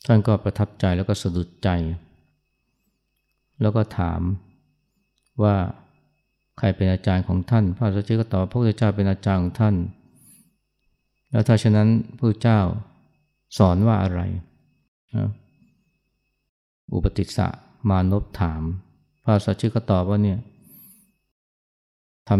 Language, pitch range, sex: Thai, 90-105 Hz, male